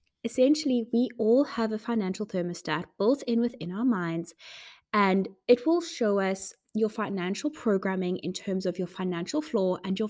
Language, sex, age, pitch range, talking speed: English, female, 20-39, 190-245 Hz, 165 wpm